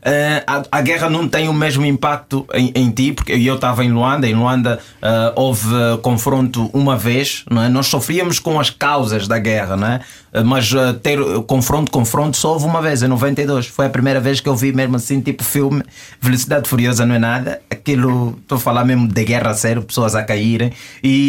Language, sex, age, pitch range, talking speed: Portuguese, male, 20-39, 120-145 Hz, 215 wpm